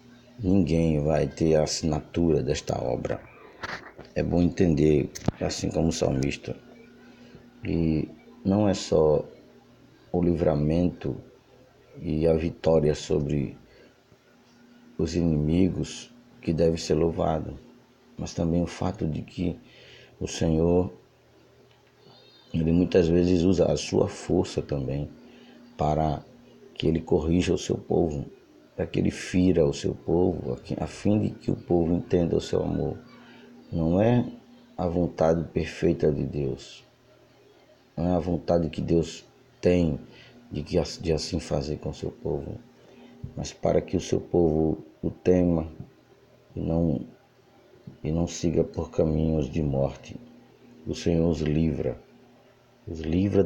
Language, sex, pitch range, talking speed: Portuguese, male, 80-95 Hz, 130 wpm